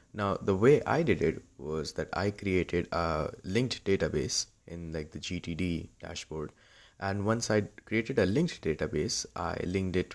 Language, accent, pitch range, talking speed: English, Indian, 85-105 Hz, 165 wpm